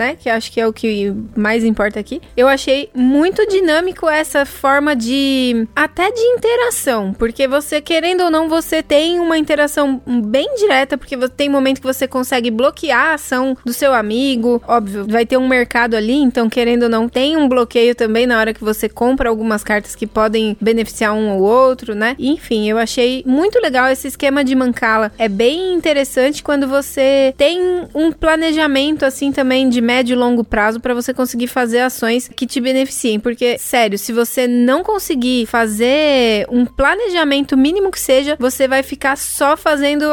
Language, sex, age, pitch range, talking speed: Portuguese, female, 20-39, 230-285 Hz, 180 wpm